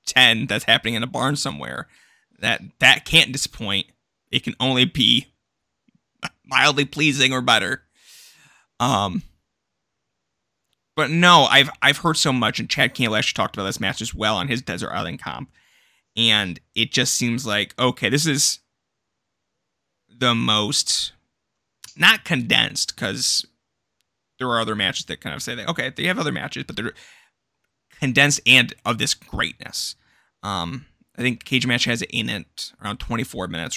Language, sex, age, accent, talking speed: English, male, 20-39, American, 155 wpm